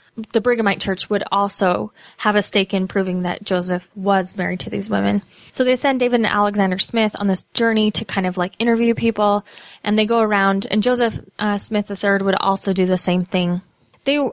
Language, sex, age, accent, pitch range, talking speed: English, female, 10-29, American, 190-245 Hz, 205 wpm